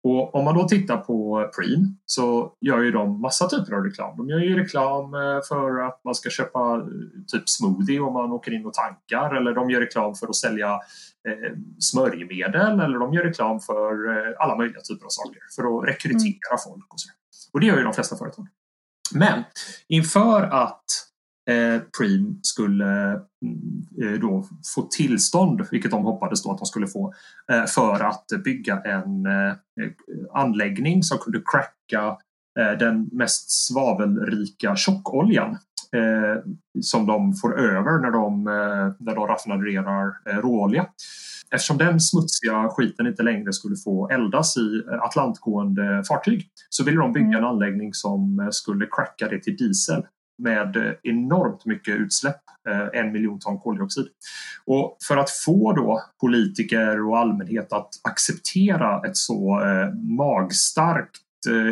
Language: English